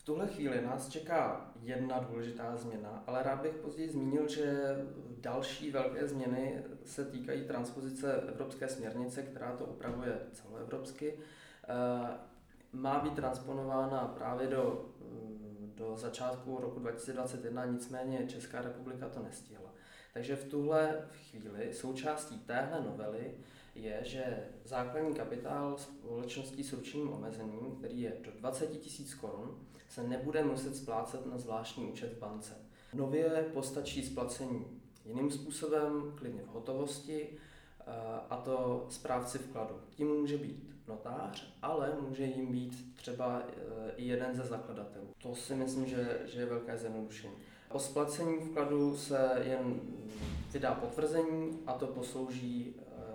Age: 20-39